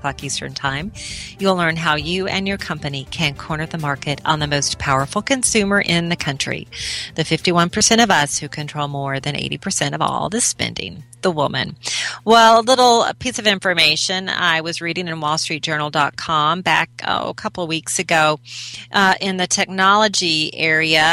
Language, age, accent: English, 40-59, American